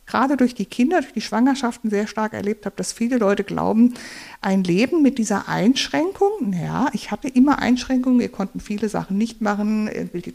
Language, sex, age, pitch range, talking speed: English, female, 50-69, 195-245 Hz, 190 wpm